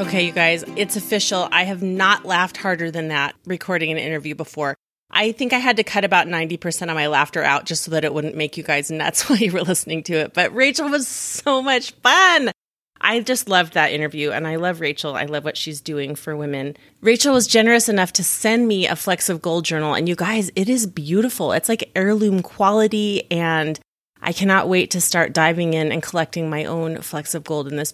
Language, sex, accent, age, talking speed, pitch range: English, female, American, 30-49, 225 wpm, 165-215 Hz